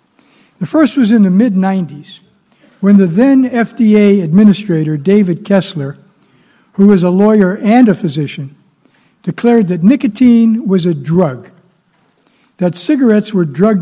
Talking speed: 135 wpm